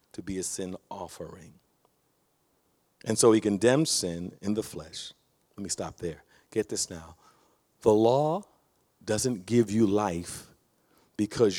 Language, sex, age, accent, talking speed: English, male, 50-69, American, 140 wpm